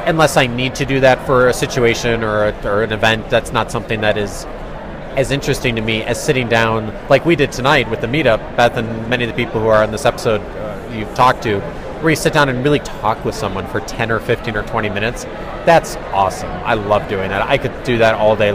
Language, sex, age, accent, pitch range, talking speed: English, male, 30-49, American, 110-140 Hz, 245 wpm